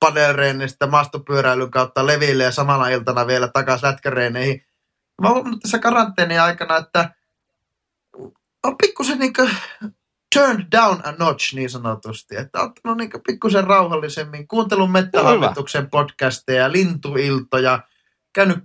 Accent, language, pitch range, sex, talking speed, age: native, Finnish, 135-195 Hz, male, 115 wpm, 30-49